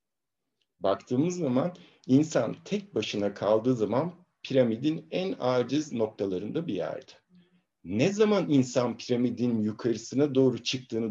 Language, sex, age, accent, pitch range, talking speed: Turkish, male, 60-79, native, 115-165 Hz, 110 wpm